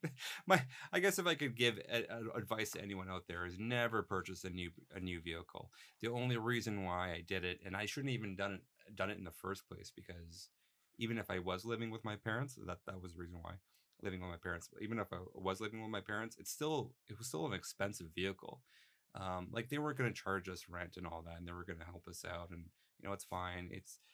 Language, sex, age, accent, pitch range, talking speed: English, male, 30-49, American, 90-110 Hz, 255 wpm